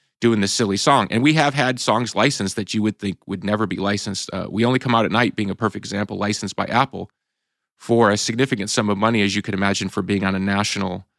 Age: 30-49